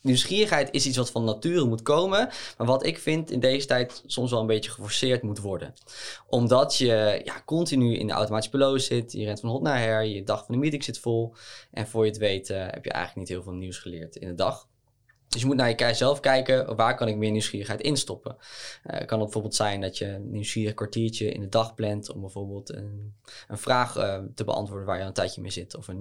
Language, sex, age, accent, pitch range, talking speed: Dutch, male, 10-29, Dutch, 105-130 Hz, 245 wpm